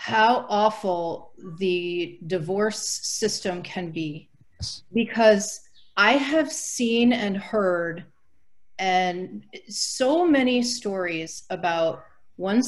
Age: 40-59